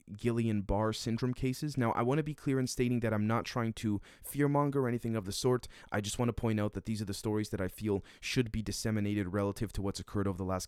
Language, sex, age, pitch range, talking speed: English, male, 20-39, 100-120 Hz, 270 wpm